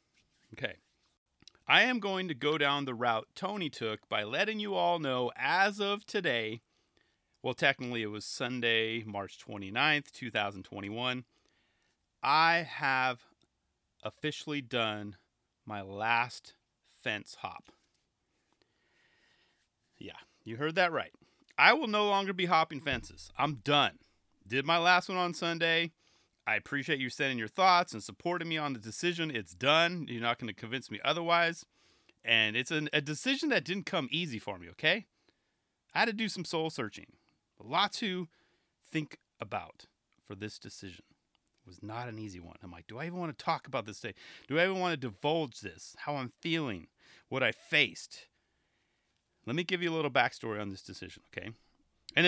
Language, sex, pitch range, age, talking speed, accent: English, male, 110-170 Hz, 30-49, 165 wpm, American